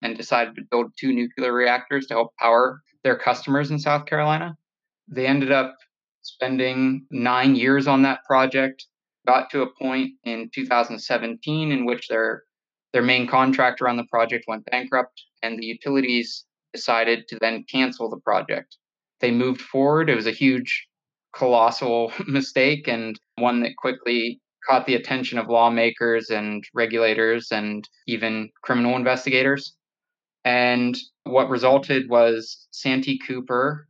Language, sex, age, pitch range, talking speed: English, male, 20-39, 120-135 Hz, 140 wpm